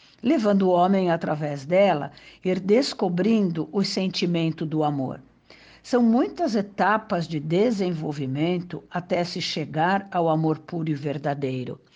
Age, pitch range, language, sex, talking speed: 60-79, 155-210 Hz, Portuguese, female, 120 wpm